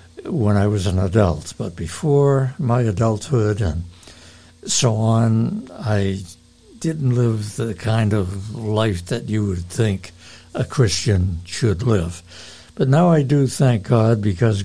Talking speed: 140 wpm